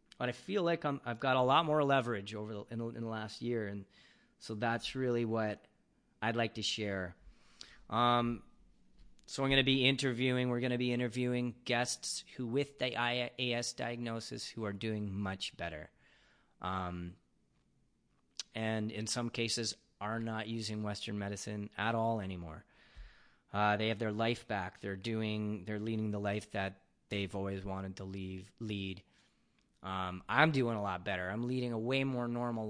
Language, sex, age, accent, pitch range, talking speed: English, male, 30-49, American, 105-125 Hz, 165 wpm